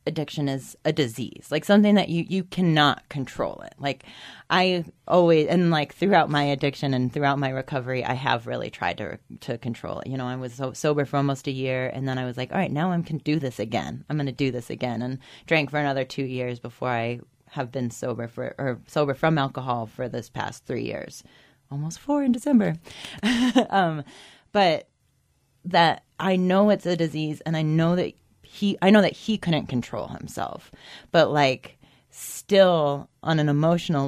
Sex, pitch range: female, 130-165 Hz